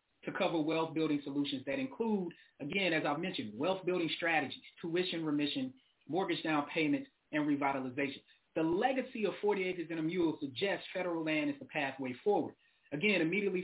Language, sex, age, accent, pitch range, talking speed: English, male, 30-49, American, 165-225 Hz, 160 wpm